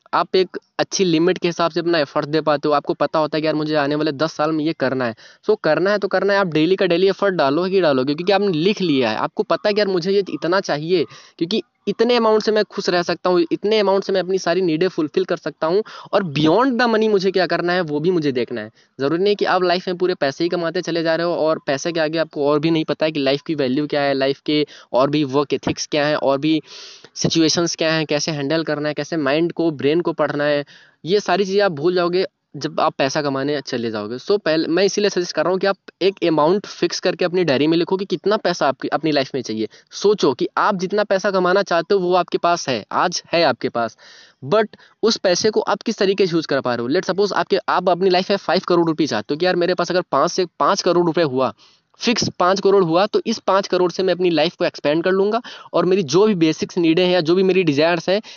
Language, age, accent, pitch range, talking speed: Hindi, 20-39, native, 150-195 Hz, 270 wpm